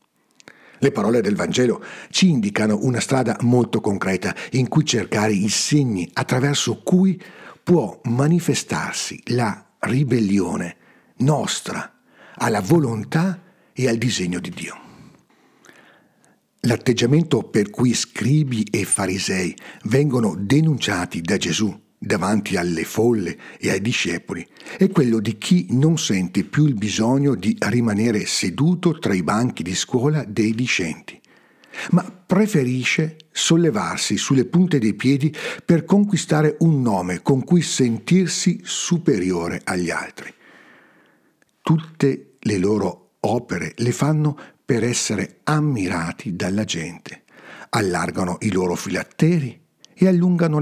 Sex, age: male, 60-79